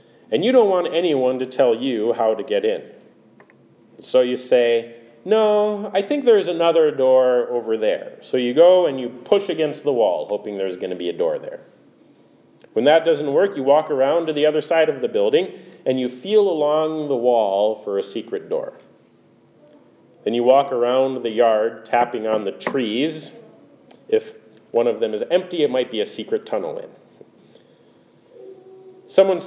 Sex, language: male, English